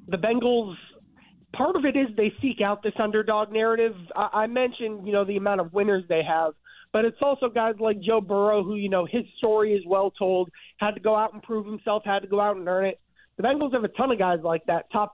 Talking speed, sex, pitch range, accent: 240 wpm, male, 190-230 Hz, American